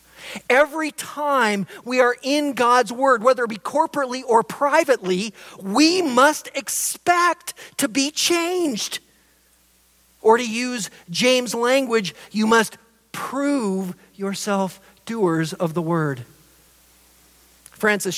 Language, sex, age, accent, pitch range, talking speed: English, male, 40-59, American, 180-240 Hz, 110 wpm